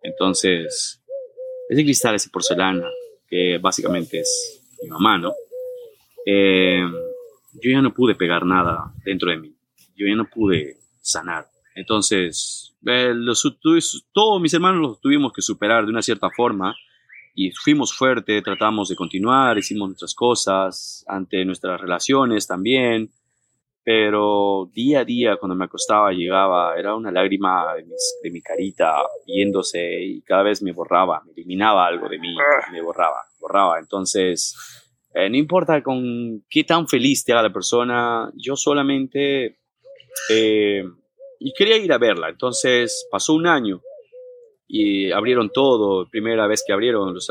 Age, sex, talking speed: 30-49, male, 145 wpm